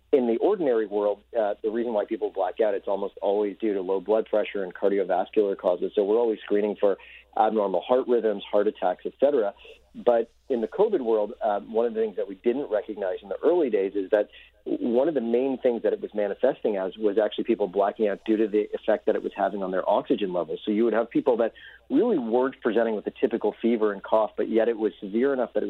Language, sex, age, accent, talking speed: English, male, 40-59, American, 245 wpm